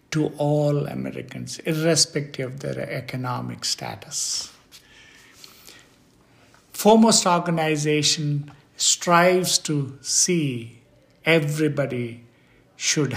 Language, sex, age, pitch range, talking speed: English, male, 60-79, 130-160 Hz, 70 wpm